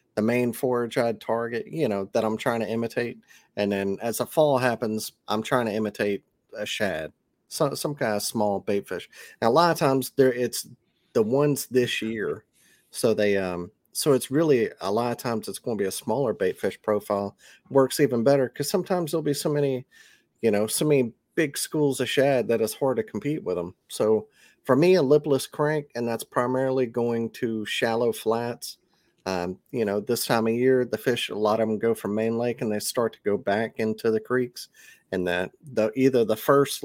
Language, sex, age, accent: English, male, 30-49, American